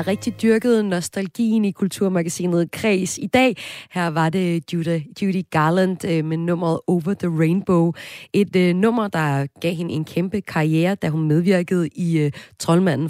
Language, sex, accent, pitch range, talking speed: Danish, female, native, 145-190 Hz, 150 wpm